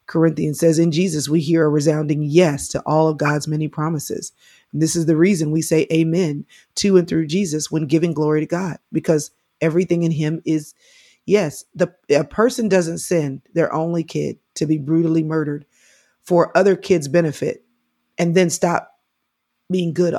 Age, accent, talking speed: 30-49, American, 175 wpm